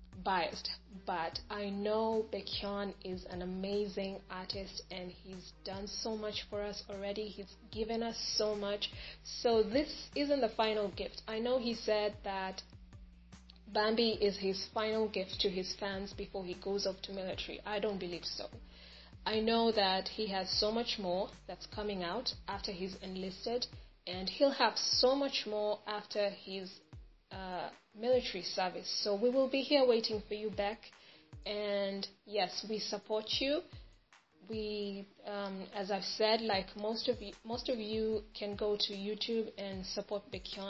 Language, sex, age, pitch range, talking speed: English, female, 20-39, 195-220 Hz, 160 wpm